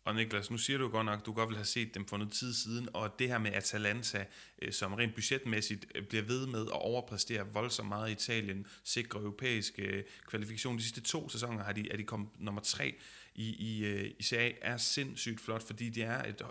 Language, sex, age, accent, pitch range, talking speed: Danish, male, 30-49, native, 105-120 Hz, 215 wpm